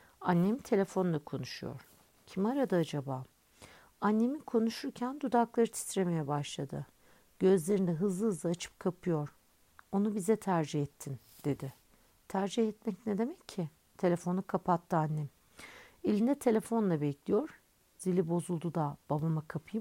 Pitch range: 150-210 Hz